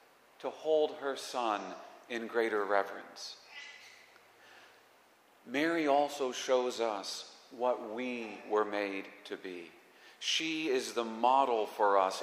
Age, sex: 40-59, male